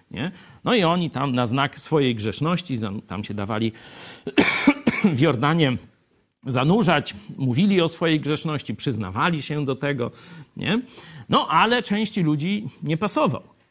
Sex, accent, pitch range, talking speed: male, native, 115-165 Hz, 130 wpm